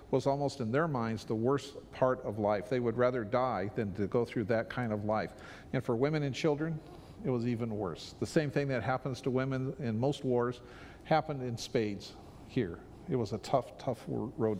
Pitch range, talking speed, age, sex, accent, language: 115-145 Hz, 210 wpm, 50-69, male, American, English